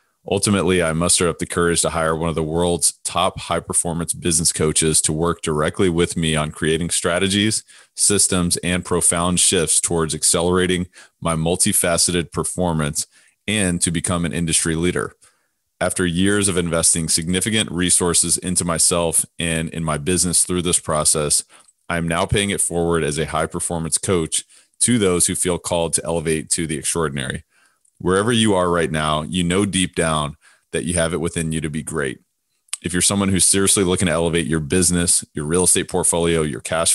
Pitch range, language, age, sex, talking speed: 80-90 Hz, English, 30-49, male, 180 wpm